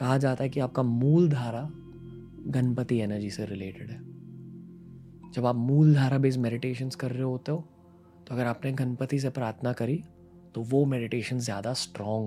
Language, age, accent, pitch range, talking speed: Hindi, 20-39, native, 110-135 Hz, 165 wpm